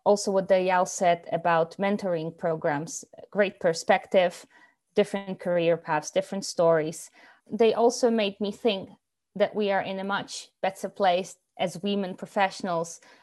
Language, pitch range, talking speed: English, 170-195 Hz, 135 wpm